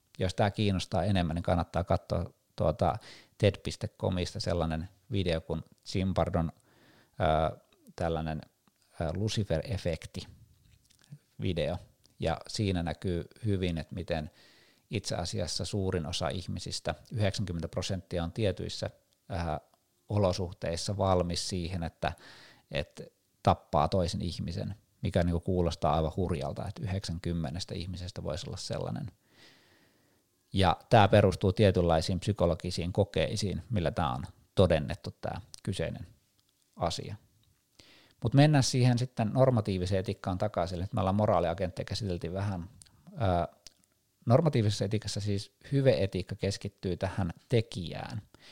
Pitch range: 85-105 Hz